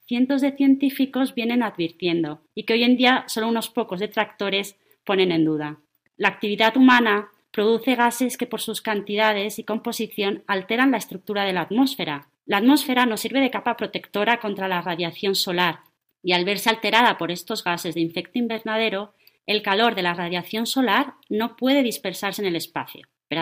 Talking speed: 175 wpm